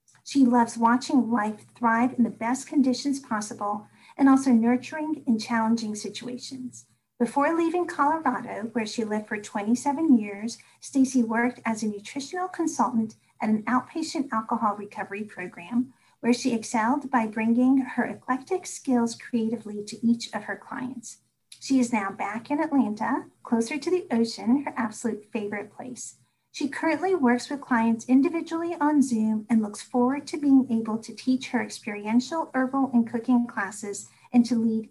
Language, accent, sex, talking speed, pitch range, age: English, American, female, 155 wpm, 215-265 Hz, 40-59